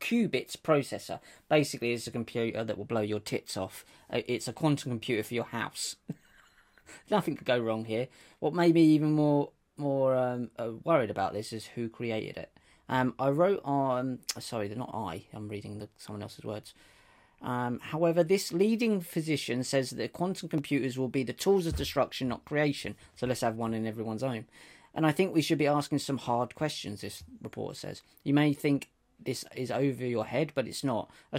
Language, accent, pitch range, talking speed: English, British, 115-145 Hz, 195 wpm